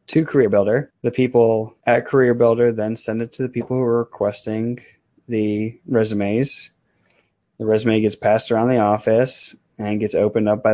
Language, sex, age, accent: English, male, 20-39, American